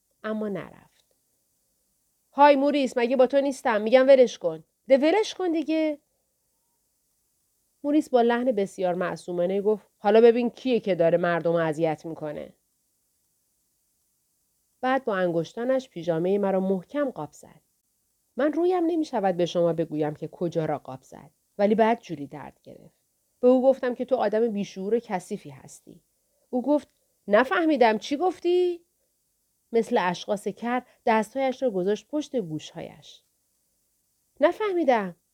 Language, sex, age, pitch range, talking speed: Persian, female, 40-59, 185-285 Hz, 125 wpm